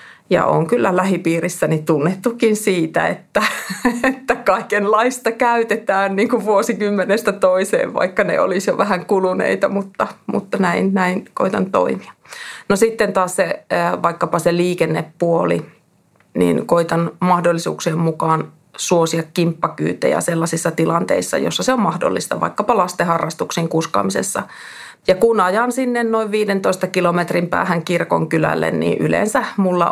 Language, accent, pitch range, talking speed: Finnish, native, 165-200 Hz, 120 wpm